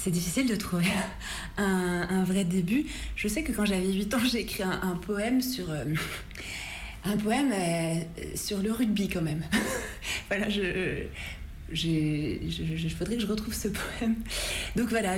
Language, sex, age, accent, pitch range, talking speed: French, female, 30-49, French, 175-210 Hz, 180 wpm